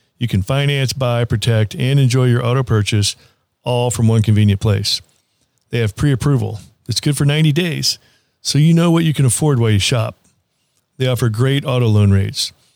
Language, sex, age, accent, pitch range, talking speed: English, male, 50-69, American, 110-130 Hz, 185 wpm